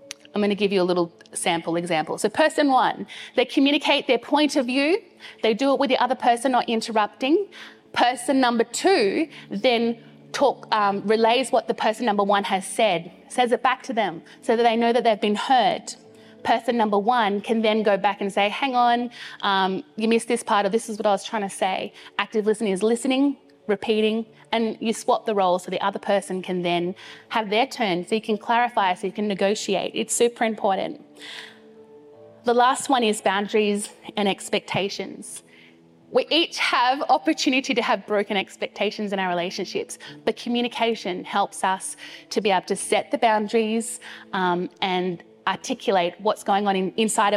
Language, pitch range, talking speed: English, 195-245 Hz, 180 wpm